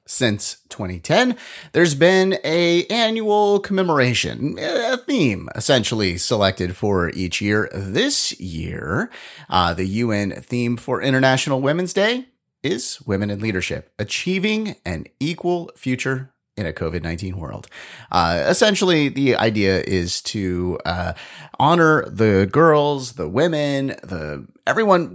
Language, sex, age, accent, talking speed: English, male, 30-49, American, 120 wpm